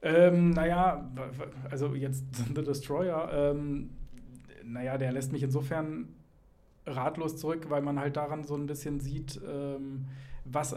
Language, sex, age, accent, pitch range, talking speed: German, male, 40-59, German, 125-140 Hz, 135 wpm